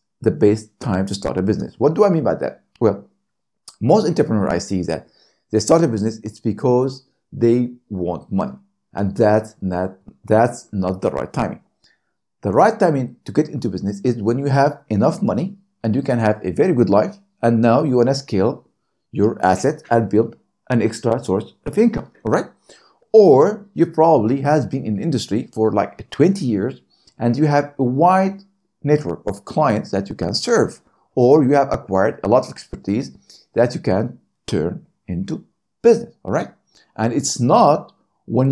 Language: English